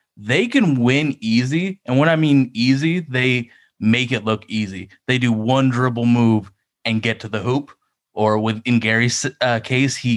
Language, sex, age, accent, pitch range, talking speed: English, male, 30-49, American, 115-140 Hz, 185 wpm